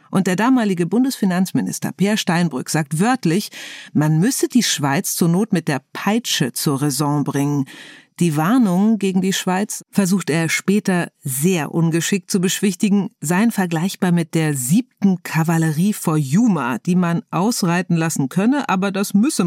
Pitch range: 160-205 Hz